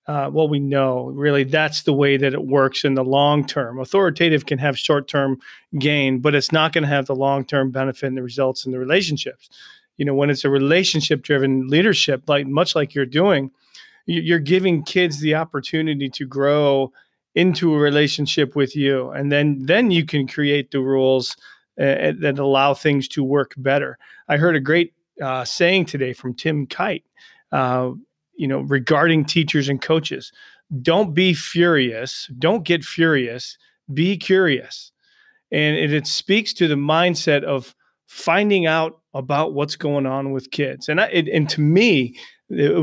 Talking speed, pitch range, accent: 170 wpm, 135-165 Hz, American